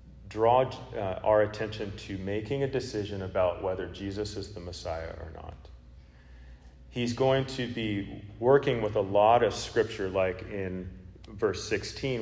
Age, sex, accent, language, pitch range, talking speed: 40-59, male, American, English, 95-120 Hz, 145 wpm